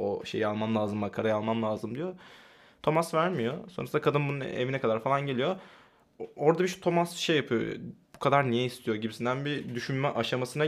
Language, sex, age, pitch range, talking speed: Turkish, male, 20-39, 120-145 Hz, 175 wpm